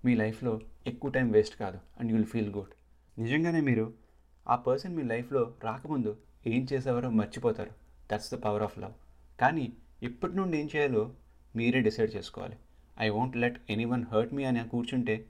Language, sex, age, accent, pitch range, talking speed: Telugu, male, 30-49, native, 100-120 Hz, 170 wpm